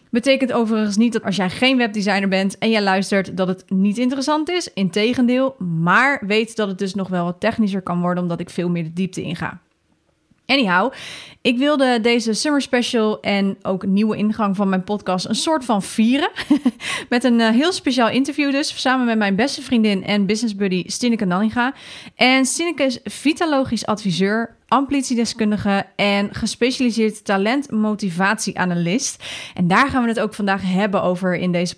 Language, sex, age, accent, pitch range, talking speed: Dutch, female, 30-49, Dutch, 190-235 Hz, 170 wpm